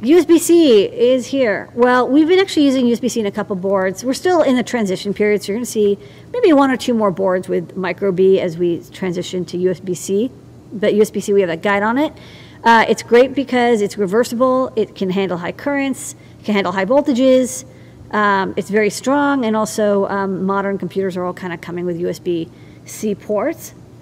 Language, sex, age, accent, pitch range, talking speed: English, female, 40-59, American, 195-250 Hz, 190 wpm